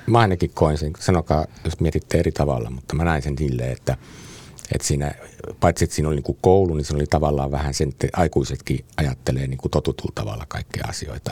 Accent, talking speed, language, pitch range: native, 200 wpm, Finnish, 65-85 Hz